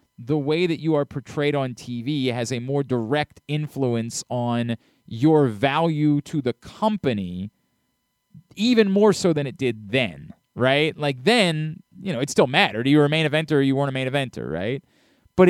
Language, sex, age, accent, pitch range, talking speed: English, male, 30-49, American, 135-170 Hz, 180 wpm